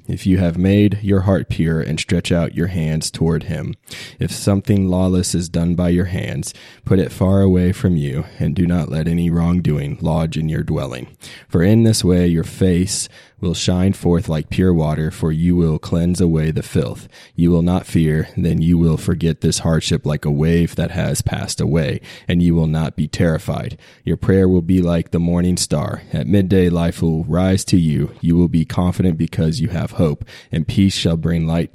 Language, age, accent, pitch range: English, 20-39, American, 80-90 Hz